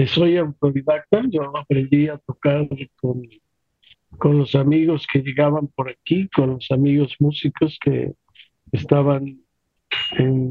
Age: 50-69